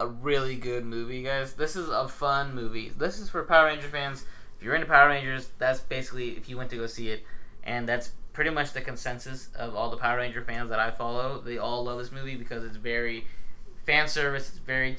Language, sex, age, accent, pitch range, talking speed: English, male, 20-39, American, 110-135 Hz, 230 wpm